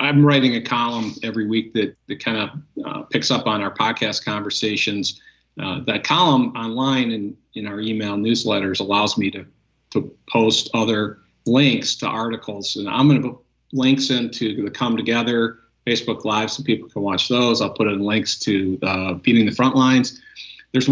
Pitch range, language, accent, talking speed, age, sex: 105-130 Hz, English, American, 180 wpm, 50-69, male